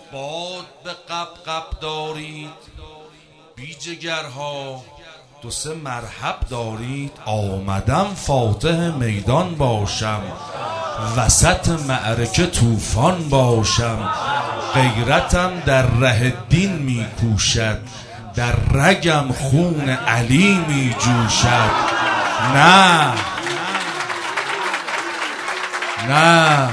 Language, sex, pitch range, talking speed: Persian, male, 100-135 Hz, 70 wpm